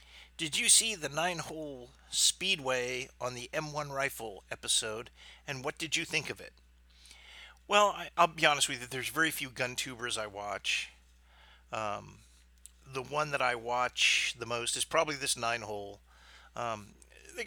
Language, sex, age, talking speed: English, male, 50-69, 150 wpm